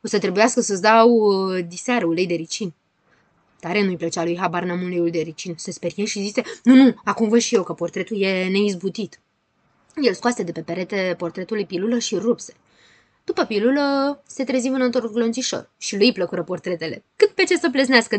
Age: 20-39